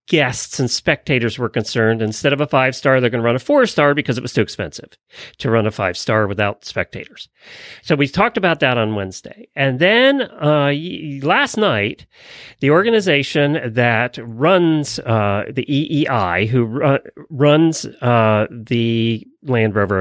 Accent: American